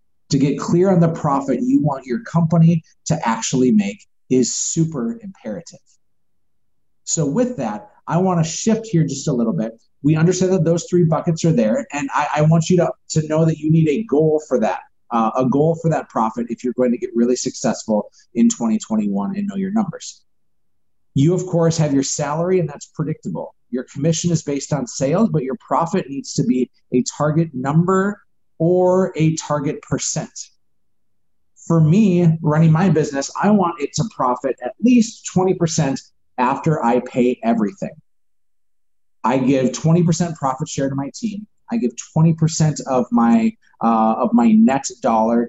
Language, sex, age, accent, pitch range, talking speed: English, male, 30-49, American, 125-175 Hz, 180 wpm